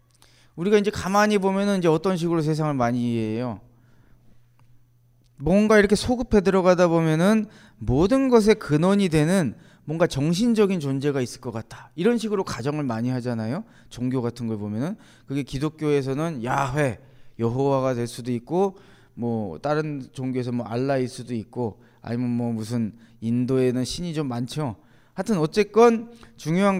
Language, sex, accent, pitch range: Korean, male, native, 125-200 Hz